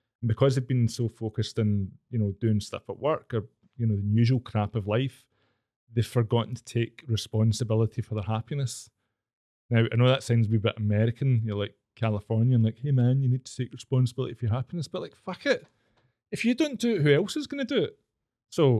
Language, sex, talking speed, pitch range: English, male, 215 wpm, 115-130 Hz